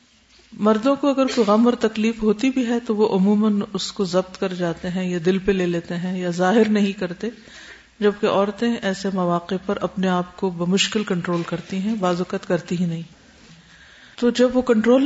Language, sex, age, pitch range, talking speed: Urdu, female, 50-69, 180-220 Hz, 195 wpm